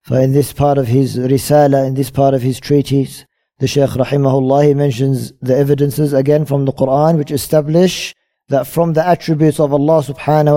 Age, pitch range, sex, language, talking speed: 40-59, 135-155 Hz, male, English, 185 wpm